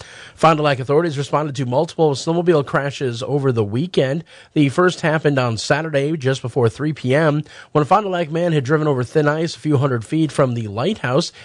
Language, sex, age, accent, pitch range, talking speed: English, male, 40-59, American, 120-155 Hz, 205 wpm